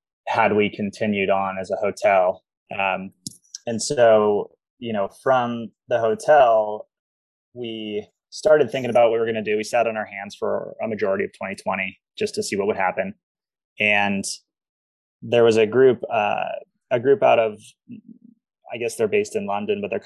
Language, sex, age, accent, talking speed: English, male, 20-39, American, 175 wpm